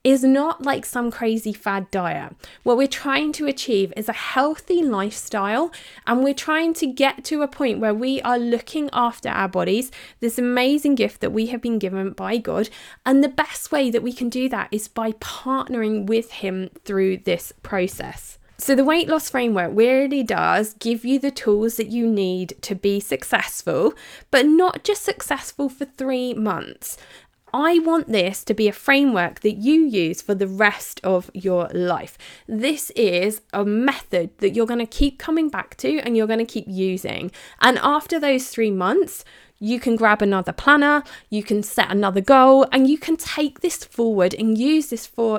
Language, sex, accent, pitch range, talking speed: English, female, British, 200-275 Hz, 185 wpm